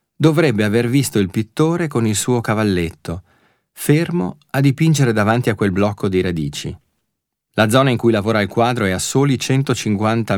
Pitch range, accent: 95-130 Hz, native